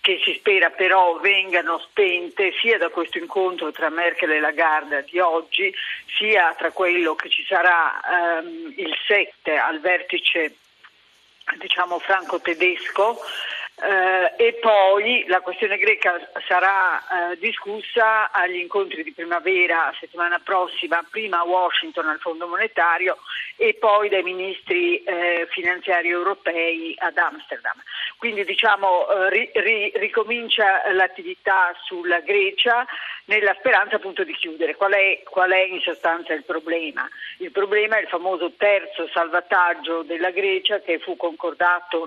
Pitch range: 170-215 Hz